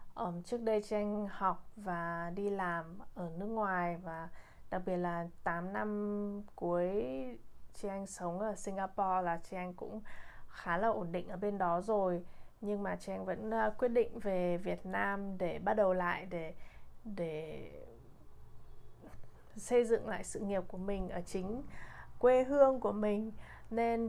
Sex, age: female, 20-39